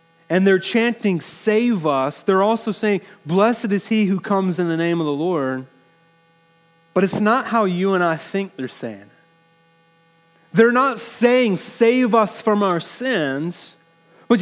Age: 30-49